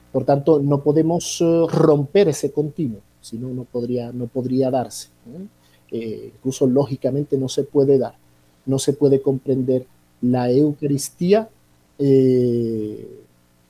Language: Spanish